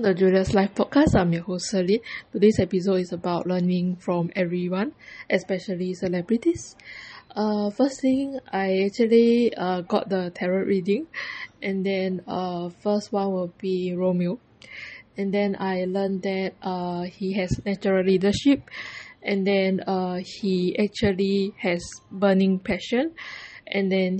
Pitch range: 185-210 Hz